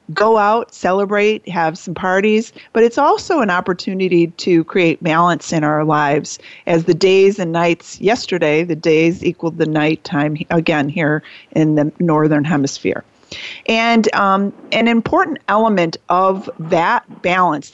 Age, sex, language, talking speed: 40-59, female, English, 145 wpm